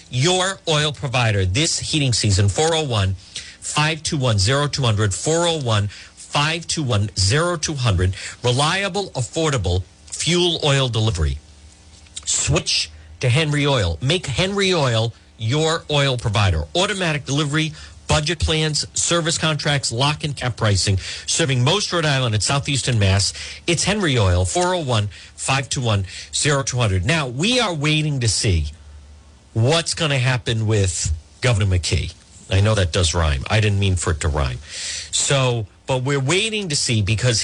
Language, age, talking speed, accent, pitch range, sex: English, 50-69, 125 wpm, American, 90-145 Hz, male